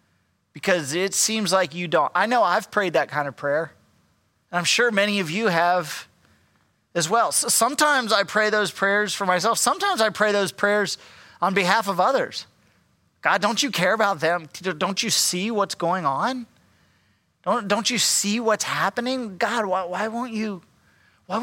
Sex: male